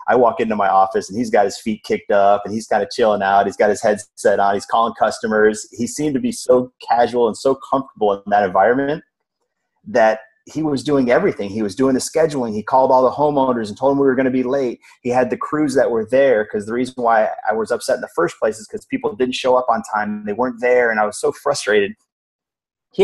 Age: 30-49